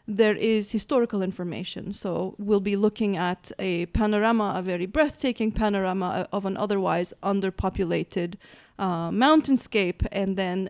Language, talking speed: English, 130 wpm